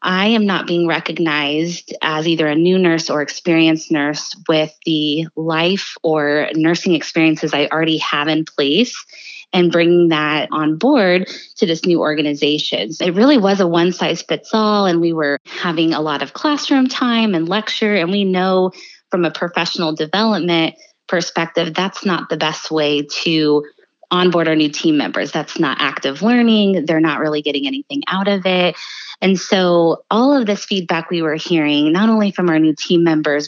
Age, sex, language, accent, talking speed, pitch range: 20-39, female, English, American, 170 wpm, 160-200 Hz